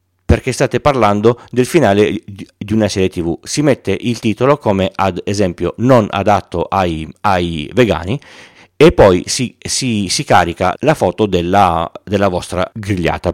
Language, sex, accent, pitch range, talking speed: Italian, male, native, 90-120 Hz, 150 wpm